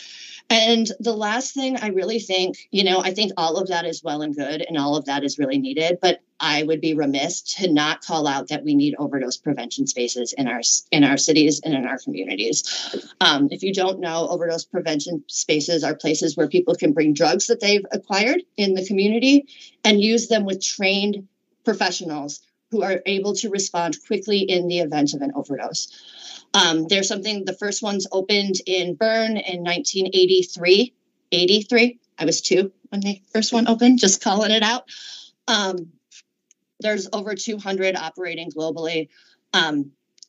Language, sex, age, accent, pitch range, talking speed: English, female, 40-59, American, 160-205 Hz, 175 wpm